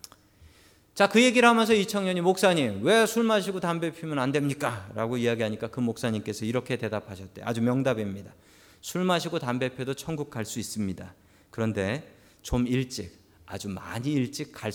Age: 40-59